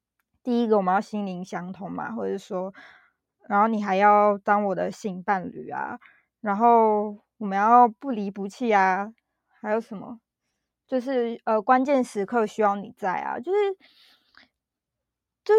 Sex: female